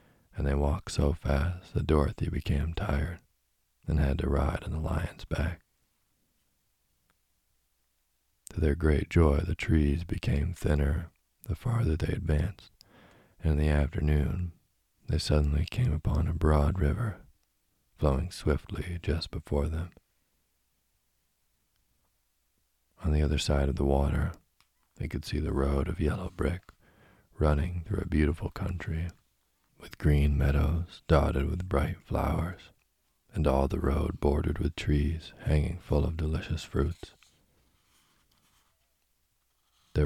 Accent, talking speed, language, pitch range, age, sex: American, 125 wpm, English, 70-90 Hz, 40-59, male